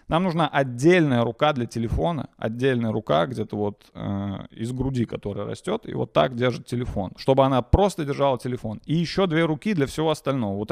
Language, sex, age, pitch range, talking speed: Russian, male, 30-49, 115-165 Hz, 185 wpm